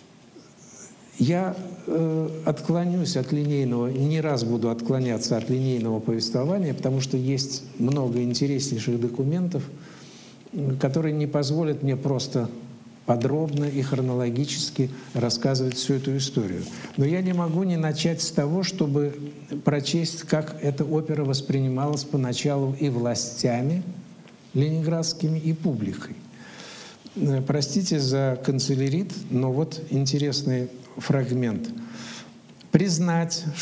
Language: Russian